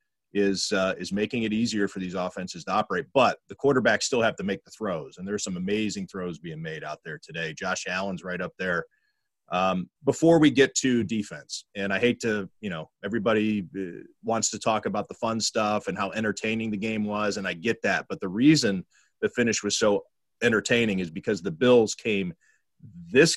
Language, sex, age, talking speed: English, male, 30-49, 205 wpm